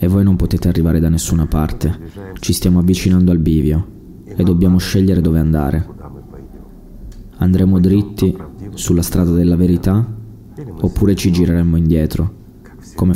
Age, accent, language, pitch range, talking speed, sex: 20-39, native, Italian, 85-100 Hz, 130 wpm, male